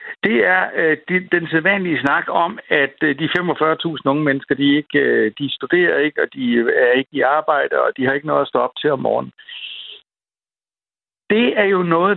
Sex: male